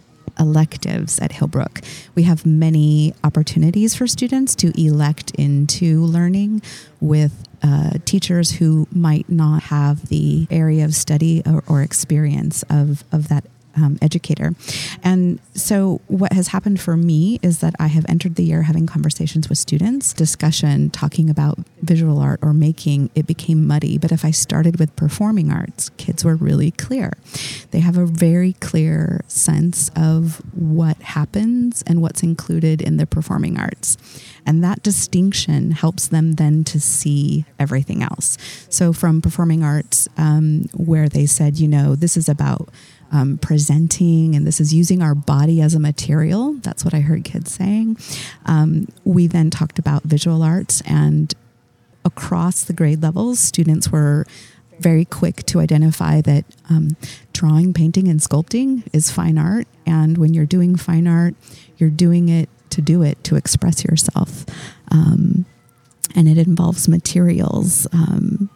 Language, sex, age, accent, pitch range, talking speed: English, female, 30-49, American, 150-175 Hz, 155 wpm